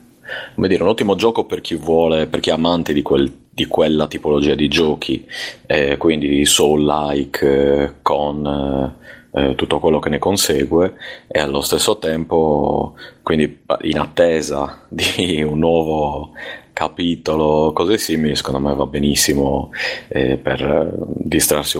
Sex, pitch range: male, 70-80 Hz